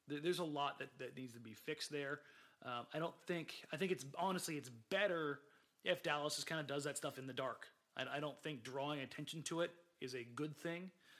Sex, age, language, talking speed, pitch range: male, 30-49, English, 230 wpm, 125-150 Hz